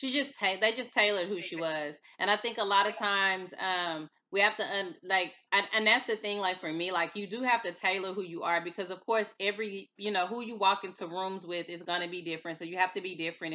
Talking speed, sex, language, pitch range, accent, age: 260 wpm, female, English, 180-220 Hz, American, 20-39